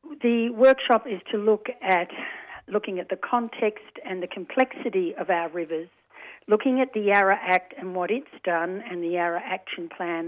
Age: 60-79